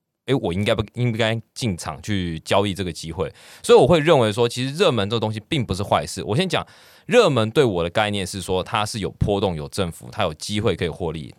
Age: 20-39